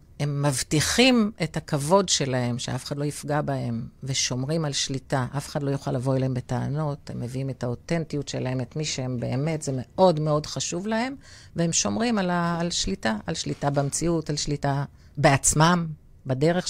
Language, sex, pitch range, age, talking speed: Hebrew, female, 130-170 Hz, 40-59, 170 wpm